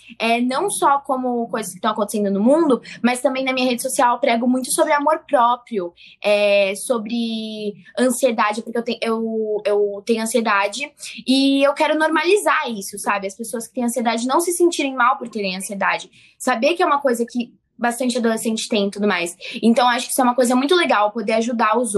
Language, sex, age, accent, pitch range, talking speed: Portuguese, female, 10-29, Brazilian, 210-265 Hz, 200 wpm